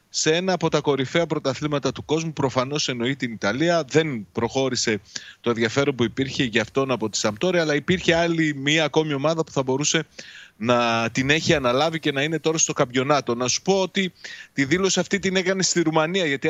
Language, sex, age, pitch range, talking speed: Greek, male, 30-49, 125-170 Hz, 195 wpm